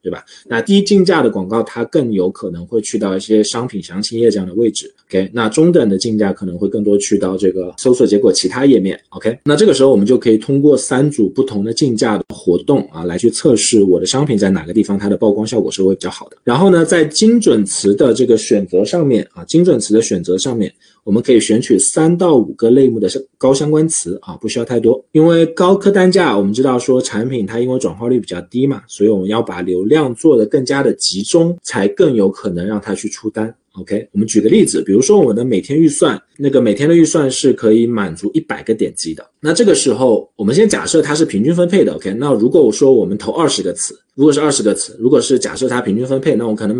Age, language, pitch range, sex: 20-39, Chinese, 100-150 Hz, male